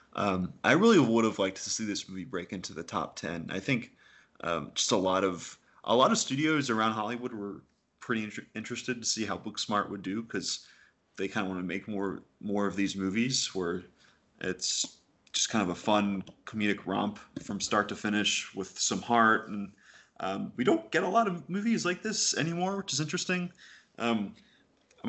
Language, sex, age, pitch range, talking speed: English, male, 20-39, 95-115 Hz, 195 wpm